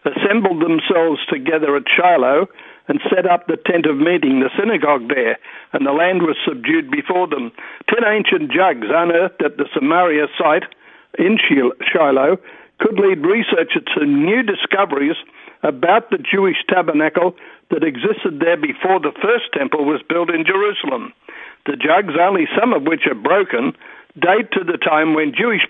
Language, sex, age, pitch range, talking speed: English, male, 60-79, 160-210 Hz, 155 wpm